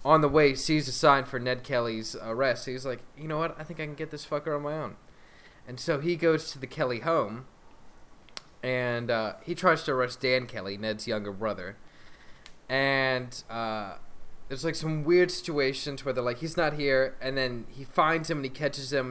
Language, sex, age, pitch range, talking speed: English, male, 20-39, 115-145 Hz, 205 wpm